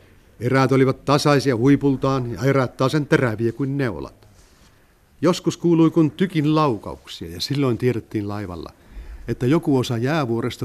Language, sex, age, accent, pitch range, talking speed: Finnish, male, 60-79, native, 110-140 Hz, 130 wpm